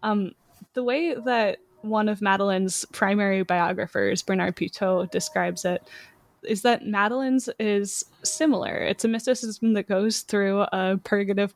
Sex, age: female, 10-29